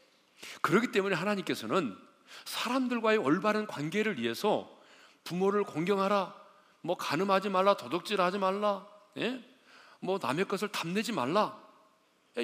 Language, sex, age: Korean, male, 40-59